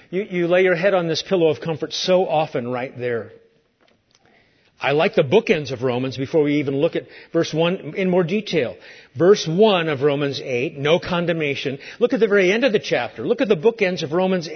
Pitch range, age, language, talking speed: 135-200 Hz, 40-59, English, 210 wpm